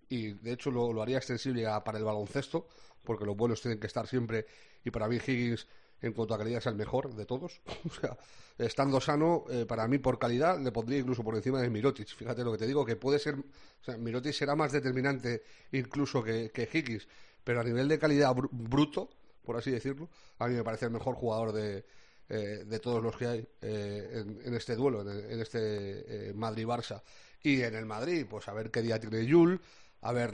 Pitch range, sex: 115-135 Hz, male